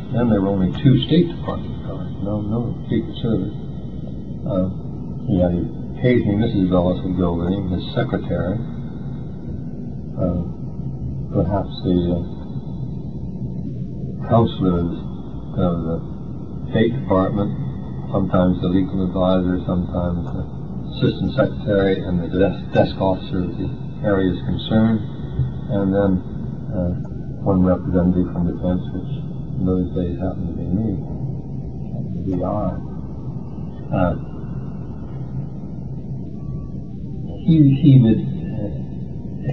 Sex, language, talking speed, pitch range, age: male, Persian, 110 wpm, 90-110 Hz, 60-79